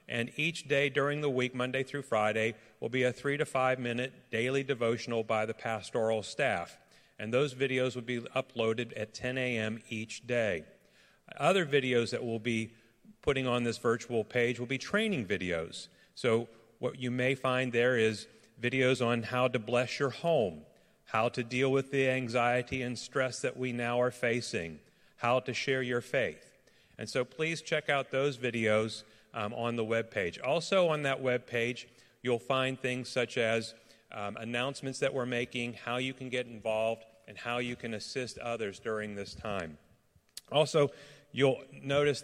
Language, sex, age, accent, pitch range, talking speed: English, male, 40-59, American, 115-135 Hz, 170 wpm